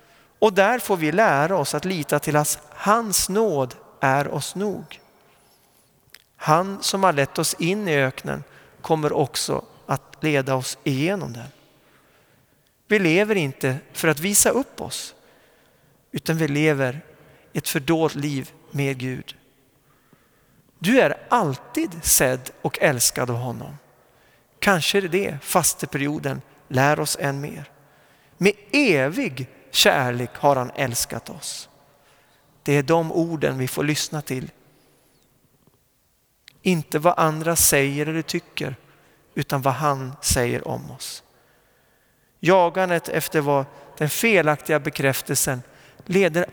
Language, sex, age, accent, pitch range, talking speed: Swedish, male, 40-59, native, 135-165 Hz, 125 wpm